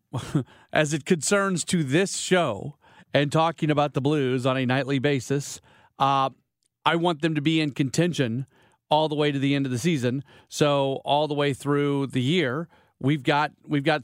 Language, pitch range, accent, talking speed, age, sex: English, 125-150 Hz, American, 185 wpm, 40-59, male